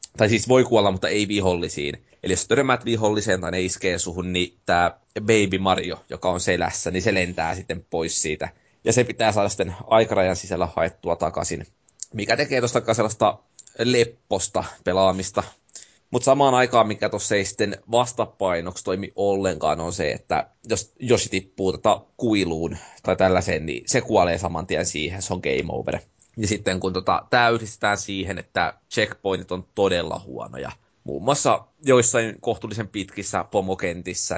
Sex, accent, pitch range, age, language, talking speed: male, native, 90-115 Hz, 20-39, Finnish, 155 wpm